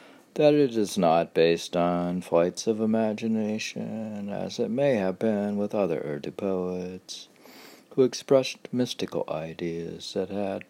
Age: 60-79